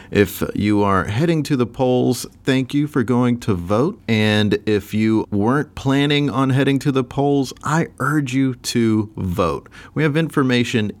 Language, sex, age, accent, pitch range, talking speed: English, male, 40-59, American, 100-140 Hz, 170 wpm